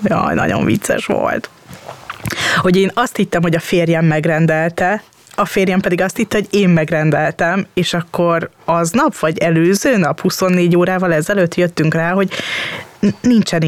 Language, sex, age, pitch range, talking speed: Hungarian, female, 20-39, 155-185 Hz, 150 wpm